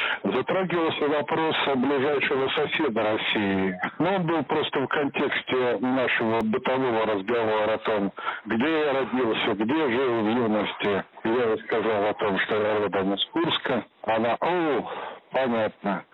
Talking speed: 140 wpm